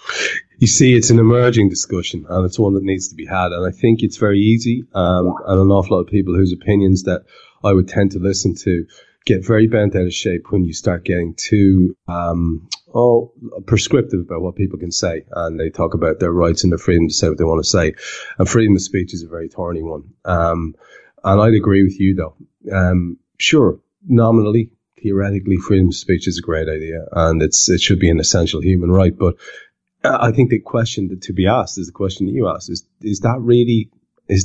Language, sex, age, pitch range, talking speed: English, male, 30-49, 90-105 Hz, 220 wpm